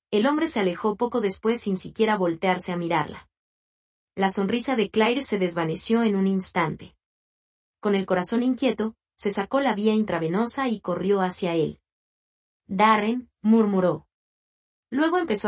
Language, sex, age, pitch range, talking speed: Spanish, female, 30-49, 185-230 Hz, 145 wpm